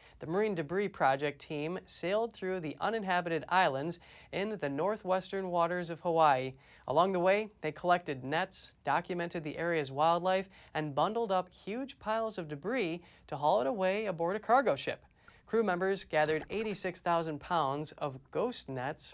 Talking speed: 155 wpm